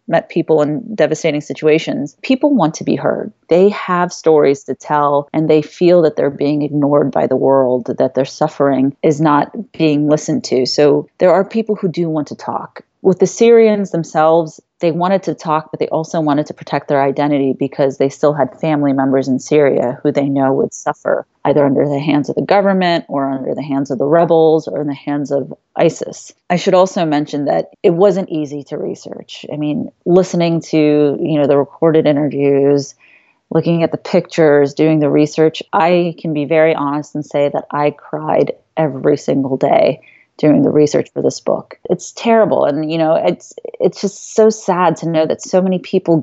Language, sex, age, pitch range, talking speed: English, female, 30-49, 145-175 Hz, 195 wpm